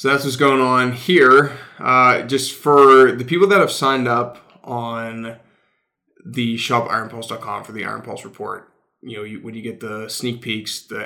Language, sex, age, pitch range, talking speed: English, male, 20-39, 115-135 Hz, 180 wpm